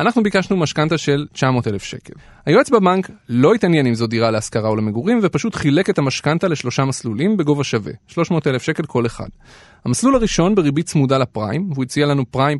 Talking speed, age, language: 175 wpm, 30-49, Hebrew